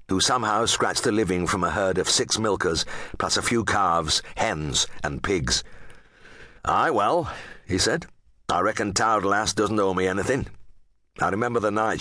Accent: British